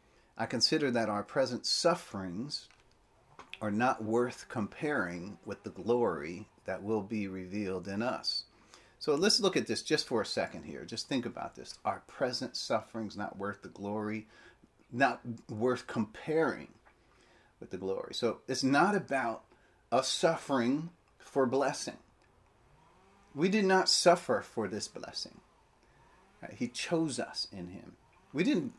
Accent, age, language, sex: American, 40-59, English, male